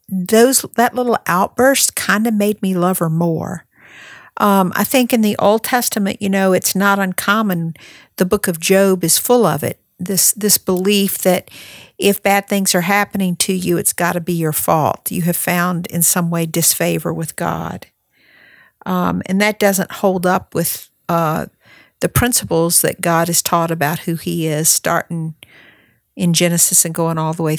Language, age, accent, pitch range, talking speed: English, 50-69, American, 170-200 Hz, 180 wpm